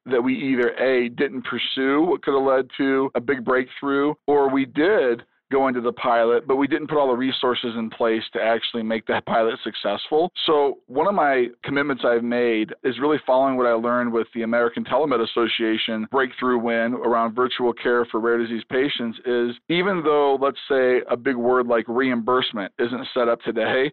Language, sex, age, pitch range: English, male, 40-59, 115-135 Hz